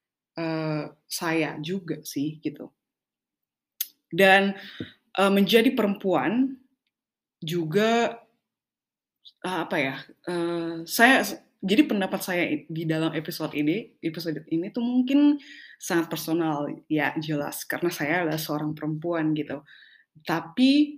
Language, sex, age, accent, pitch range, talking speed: Indonesian, female, 20-39, native, 160-230 Hz, 105 wpm